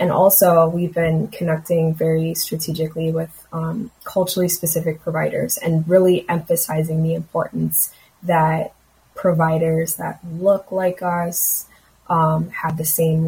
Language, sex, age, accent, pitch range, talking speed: English, female, 20-39, American, 160-170 Hz, 120 wpm